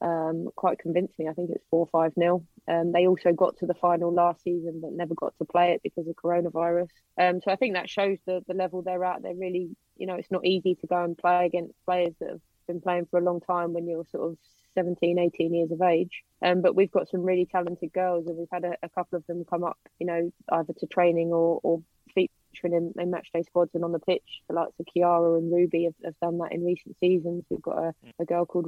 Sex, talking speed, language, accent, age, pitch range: female, 255 wpm, English, British, 20-39, 170-180 Hz